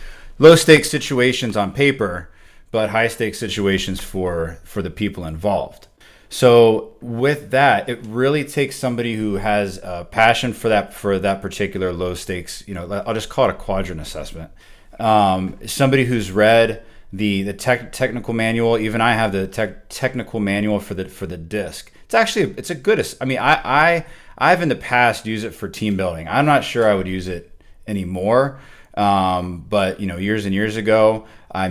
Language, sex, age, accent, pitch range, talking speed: English, male, 30-49, American, 90-115 Hz, 185 wpm